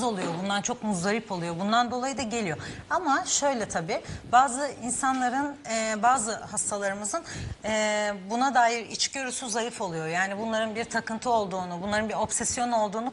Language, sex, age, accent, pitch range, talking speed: Turkish, female, 40-59, native, 200-240 Hz, 135 wpm